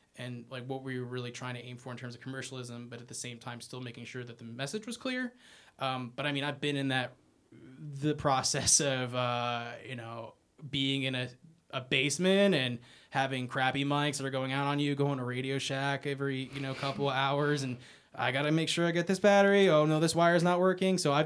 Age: 20-39